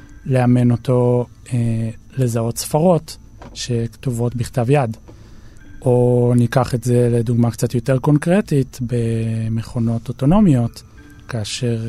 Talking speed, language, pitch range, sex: 95 wpm, Hebrew, 115-135 Hz, male